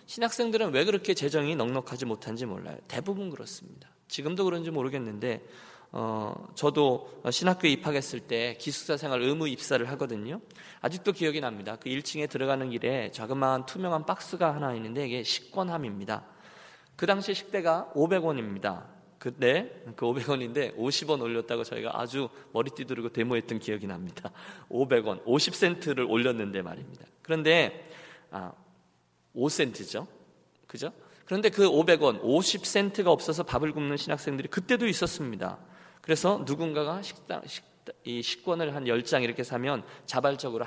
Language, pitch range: Korean, 120-170 Hz